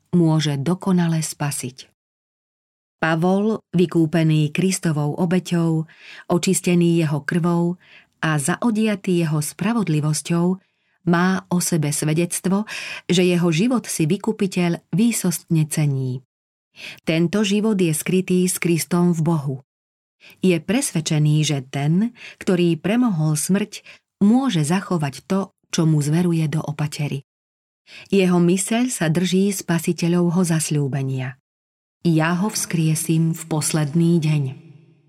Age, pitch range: 30-49, 150-180 Hz